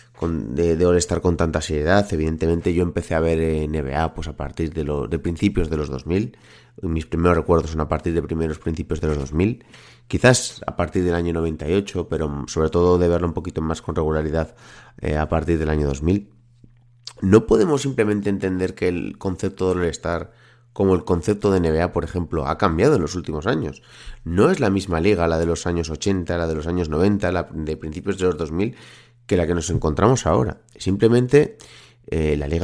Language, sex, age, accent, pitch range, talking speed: Spanish, male, 30-49, Spanish, 80-100 Hz, 200 wpm